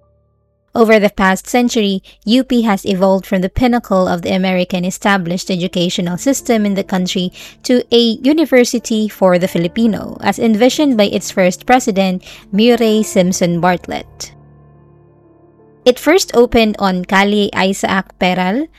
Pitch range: 185-235 Hz